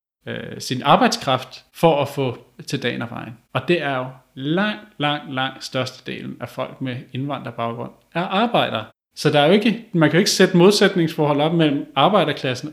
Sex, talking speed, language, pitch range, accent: male, 175 wpm, Danish, 120-155 Hz, native